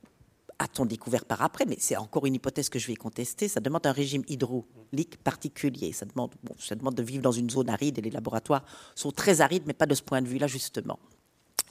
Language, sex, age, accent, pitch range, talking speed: French, female, 50-69, French, 125-165 Hz, 225 wpm